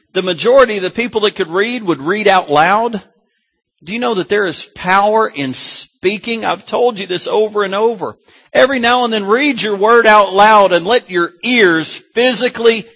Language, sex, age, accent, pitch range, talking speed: English, male, 40-59, American, 175-235 Hz, 195 wpm